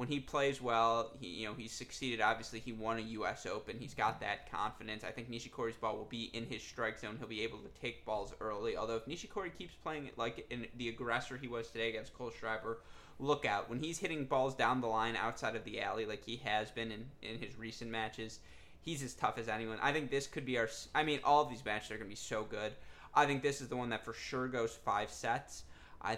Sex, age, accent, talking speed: male, 20-39, American, 250 wpm